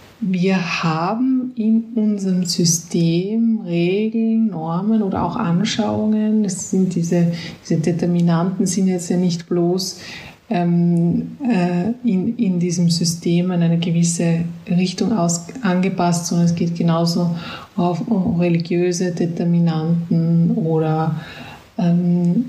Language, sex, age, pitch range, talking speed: German, female, 20-39, 170-210 Hz, 110 wpm